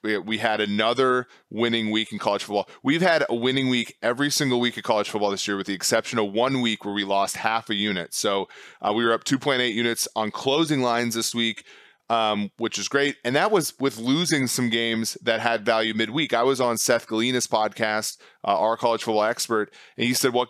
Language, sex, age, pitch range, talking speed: English, male, 30-49, 110-130 Hz, 220 wpm